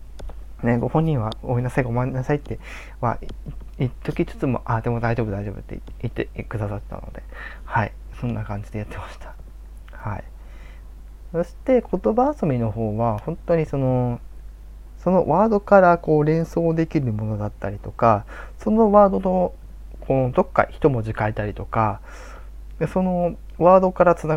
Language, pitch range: Japanese, 105-160 Hz